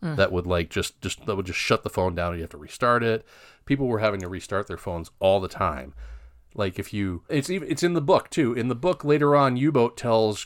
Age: 40-59